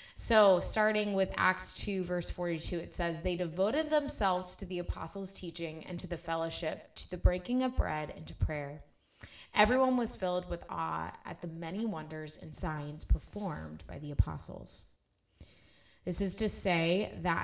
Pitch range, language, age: 160-185 Hz, English, 20-39